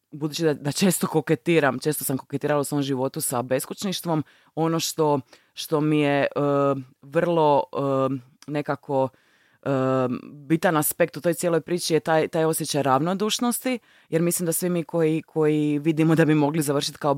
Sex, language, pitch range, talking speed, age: female, Croatian, 135-160 Hz, 165 wpm, 20-39